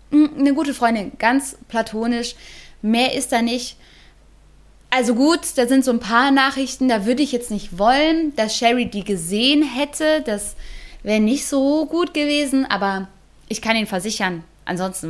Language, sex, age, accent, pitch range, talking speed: German, female, 20-39, German, 200-245 Hz, 160 wpm